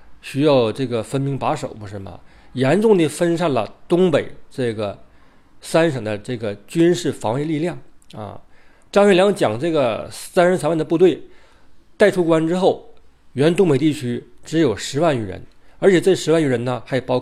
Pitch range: 115-160 Hz